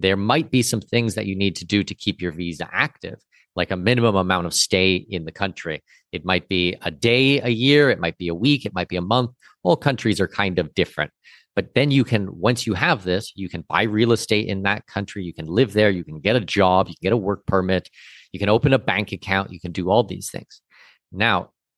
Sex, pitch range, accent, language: male, 95-125 Hz, American, English